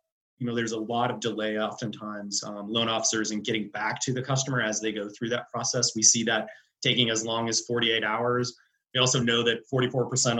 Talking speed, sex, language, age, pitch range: 215 wpm, male, English, 30-49, 110-125 Hz